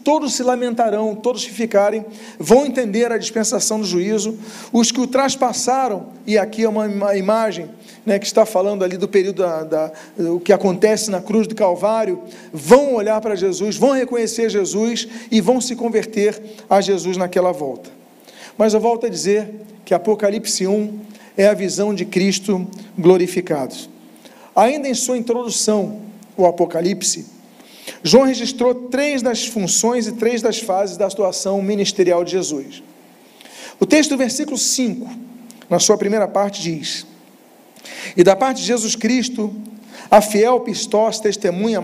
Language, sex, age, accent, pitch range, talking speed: Portuguese, male, 40-59, Brazilian, 195-235 Hz, 150 wpm